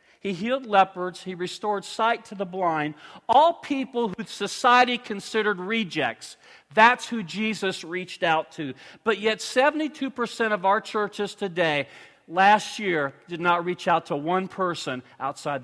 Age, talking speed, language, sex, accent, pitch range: 50-69, 145 wpm, English, male, American, 140-200 Hz